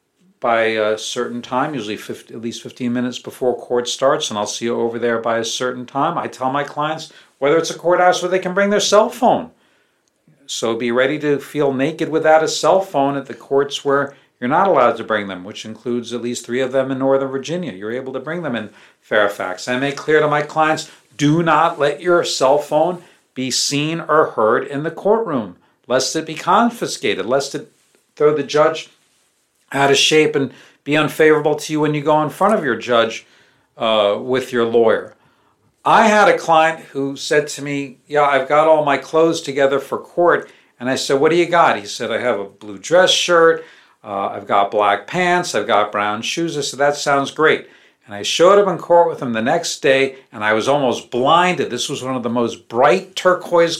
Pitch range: 120-160 Hz